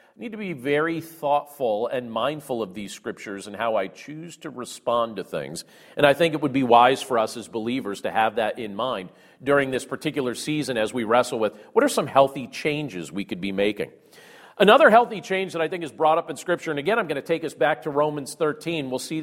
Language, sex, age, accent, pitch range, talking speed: English, male, 40-59, American, 135-180 Hz, 235 wpm